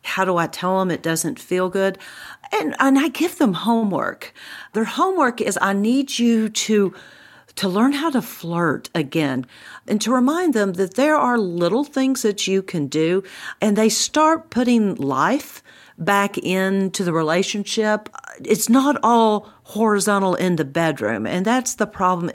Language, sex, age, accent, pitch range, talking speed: English, female, 50-69, American, 175-225 Hz, 165 wpm